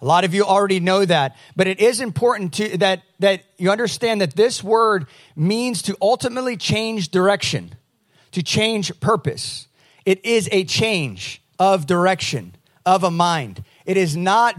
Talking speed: 155 wpm